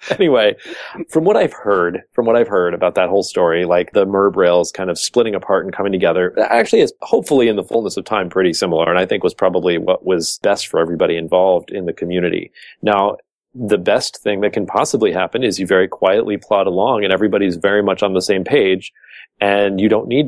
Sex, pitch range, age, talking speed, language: male, 95-125 Hz, 30-49, 220 wpm, English